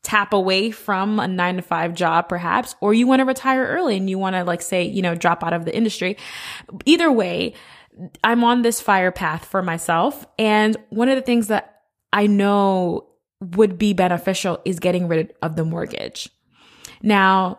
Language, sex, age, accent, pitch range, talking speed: English, female, 20-39, American, 180-220 Hz, 190 wpm